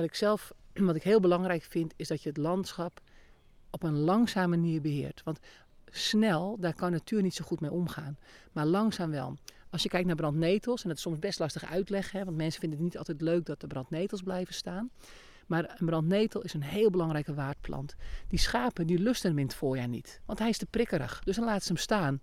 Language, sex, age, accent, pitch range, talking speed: Dutch, male, 40-59, Dutch, 160-210 Hz, 225 wpm